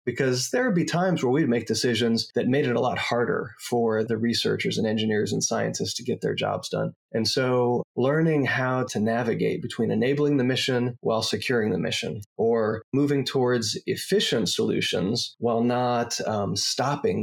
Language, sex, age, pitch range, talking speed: English, male, 30-49, 115-130 Hz, 175 wpm